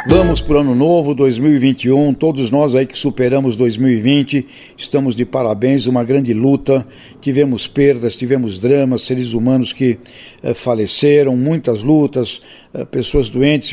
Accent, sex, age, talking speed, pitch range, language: Brazilian, male, 60-79, 140 wpm, 125-145 Hz, English